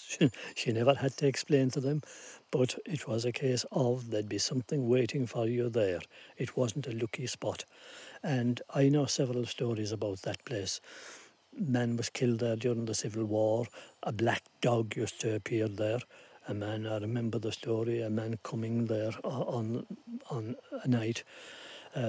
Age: 60-79